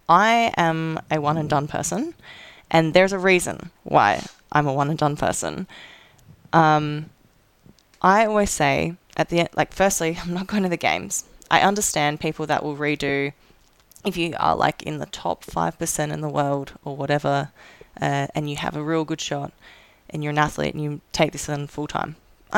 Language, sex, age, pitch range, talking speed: English, female, 20-39, 150-175 Hz, 190 wpm